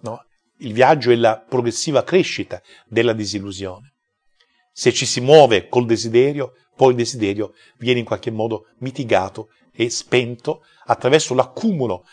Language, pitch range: Italian, 110-135 Hz